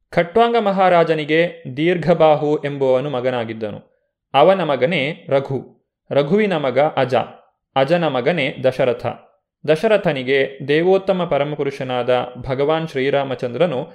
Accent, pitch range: native, 135-175 Hz